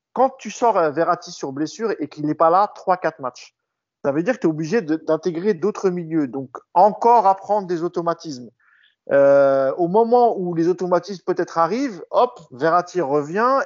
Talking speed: 175 wpm